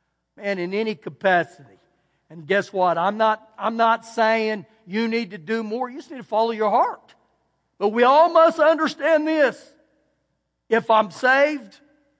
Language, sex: English, male